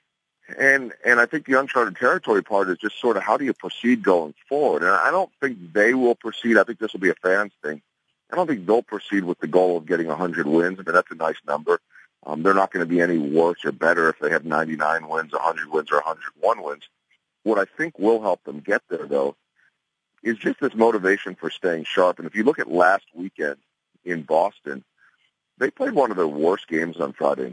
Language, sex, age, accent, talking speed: English, male, 40-59, American, 225 wpm